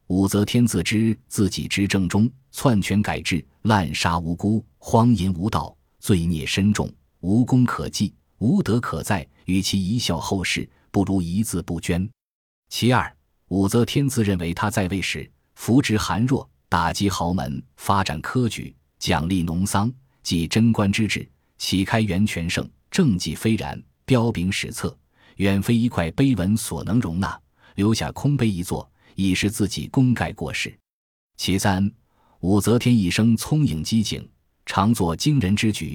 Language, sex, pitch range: Chinese, male, 85-115 Hz